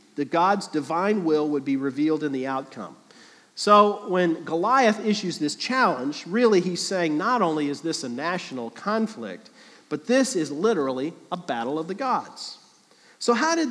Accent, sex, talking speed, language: American, male, 165 wpm, English